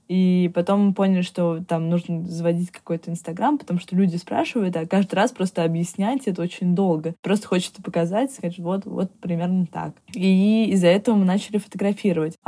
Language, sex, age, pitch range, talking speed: Russian, female, 20-39, 170-195 Hz, 175 wpm